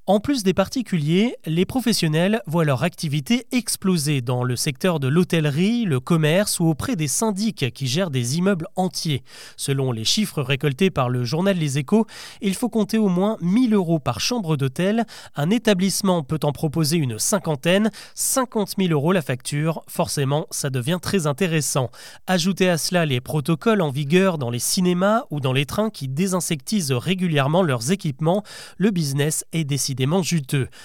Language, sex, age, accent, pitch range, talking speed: French, male, 30-49, French, 145-200 Hz, 170 wpm